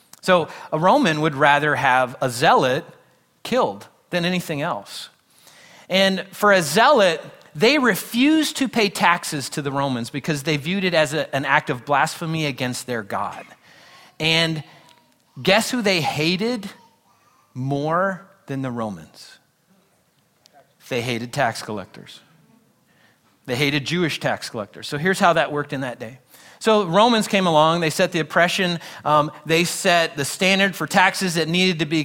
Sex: male